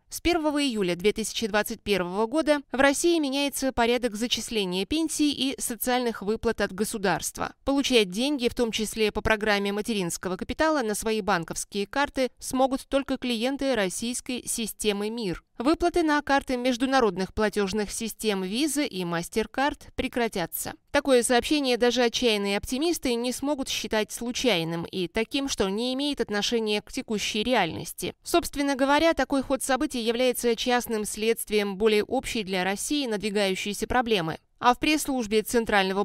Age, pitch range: 20-39, 210-265 Hz